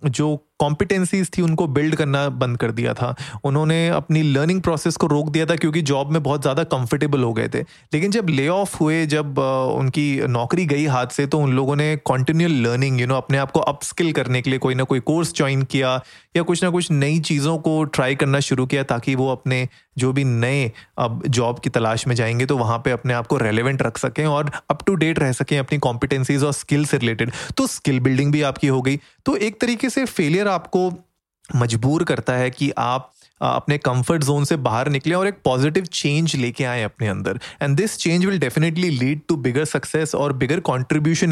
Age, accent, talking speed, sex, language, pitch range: 30-49, native, 210 wpm, male, Hindi, 130-160 Hz